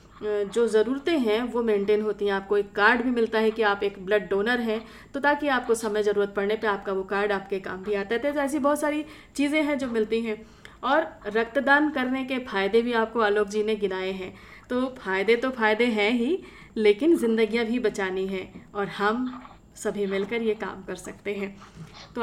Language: Hindi